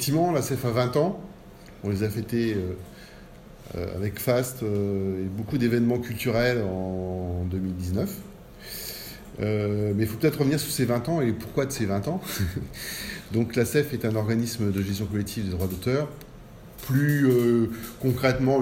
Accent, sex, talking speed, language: French, male, 150 wpm, French